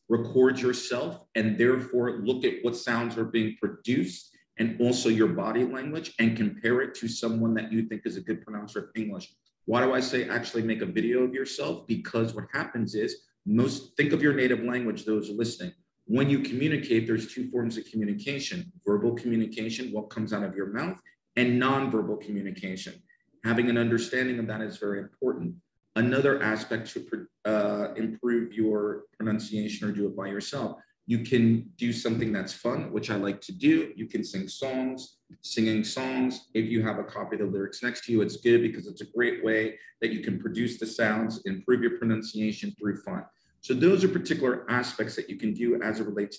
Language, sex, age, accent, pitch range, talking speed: English, male, 40-59, American, 110-125 Hz, 195 wpm